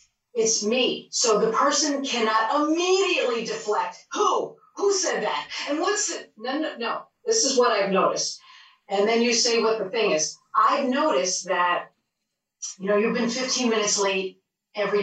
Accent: American